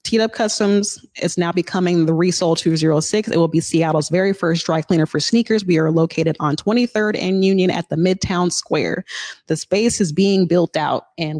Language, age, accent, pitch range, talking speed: English, 30-49, American, 155-180 Hz, 195 wpm